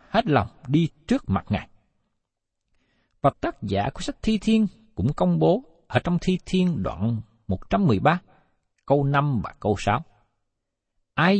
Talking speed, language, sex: 145 wpm, Vietnamese, male